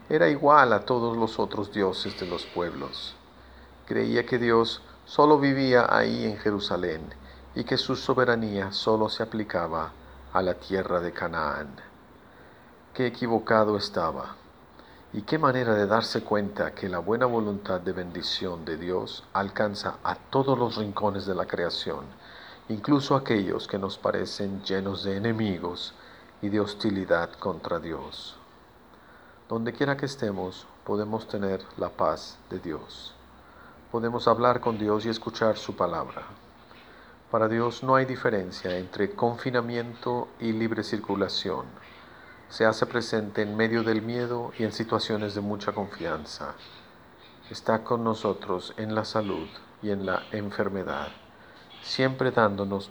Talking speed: 135 wpm